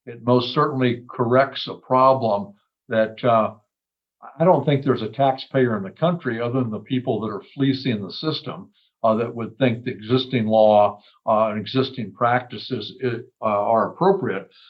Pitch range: 115-130 Hz